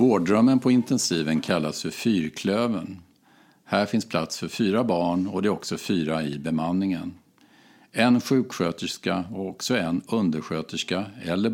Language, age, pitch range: Swedish, 50-69, 80-100 Hz